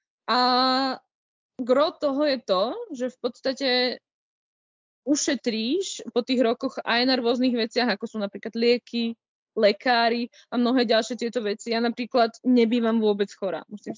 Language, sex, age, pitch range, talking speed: Czech, female, 20-39, 215-245 Hz, 135 wpm